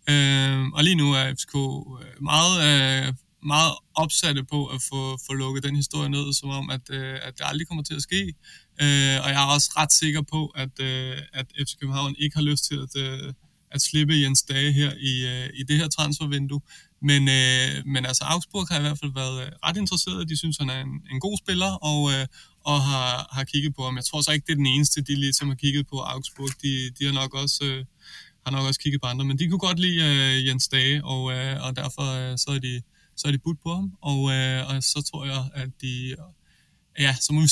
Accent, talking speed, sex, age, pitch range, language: native, 240 wpm, male, 20-39, 135-150 Hz, Danish